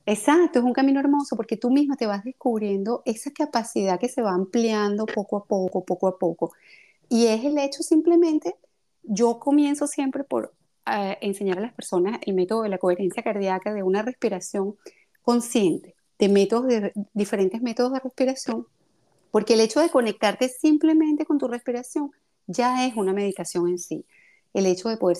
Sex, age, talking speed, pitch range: female, 30-49, 175 wpm, 195-250 Hz